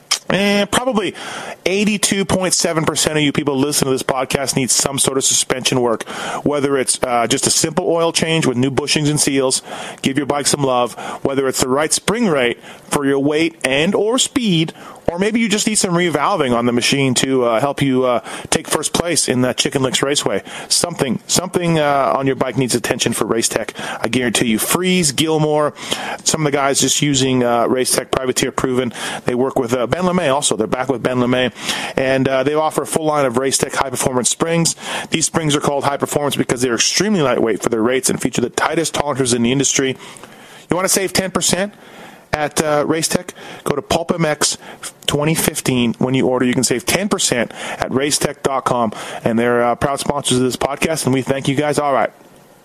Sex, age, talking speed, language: male, 30-49, 205 wpm, English